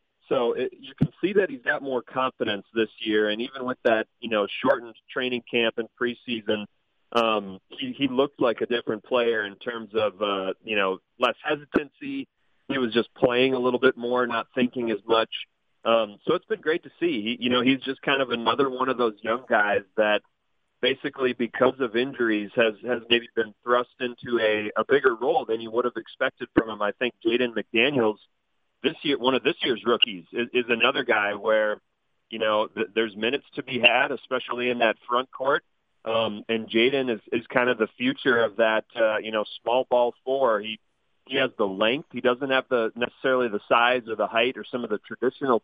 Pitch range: 110-130 Hz